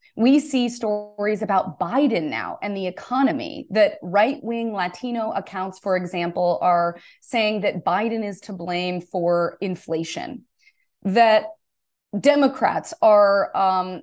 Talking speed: 120 wpm